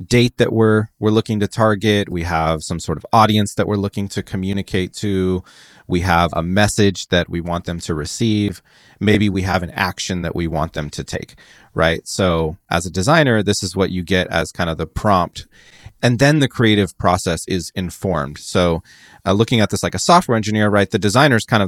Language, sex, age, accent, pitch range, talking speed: English, male, 30-49, American, 85-105 Hz, 215 wpm